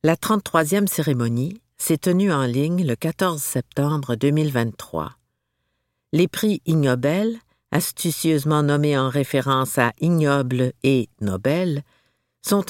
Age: 50-69